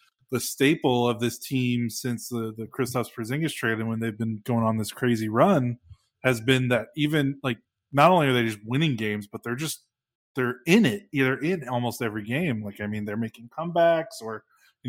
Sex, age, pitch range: male, 20-39, 115-135 Hz